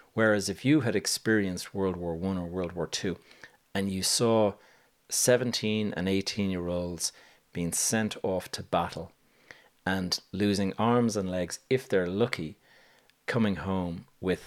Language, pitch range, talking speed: English, 90-110 Hz, 150 wpm